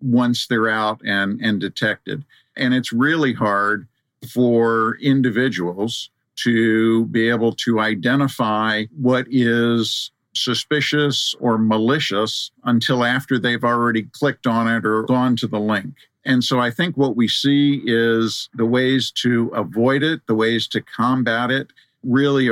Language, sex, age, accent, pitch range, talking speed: English, male, 50-69, American, 110-130 Hz, 140 wpm